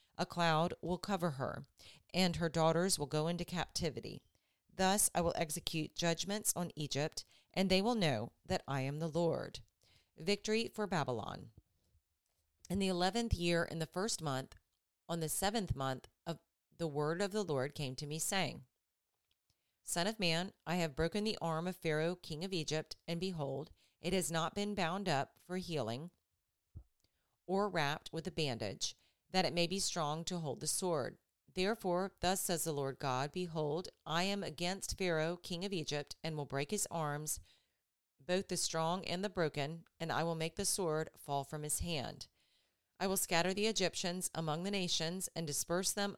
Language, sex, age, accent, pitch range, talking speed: English, female, 40-59, American, 150-185 Hz, 175 wpm